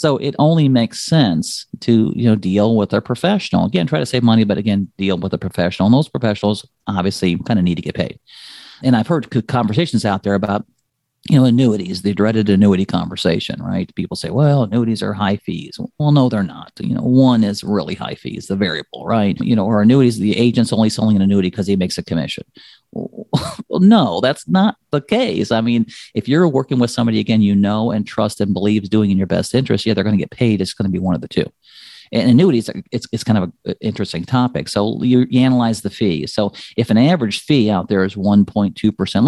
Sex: male